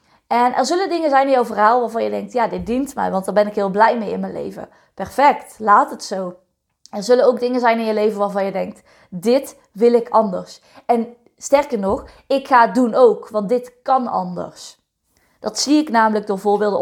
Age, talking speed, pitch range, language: 20-39, 220 wpm, 215-255 Hz, Dutch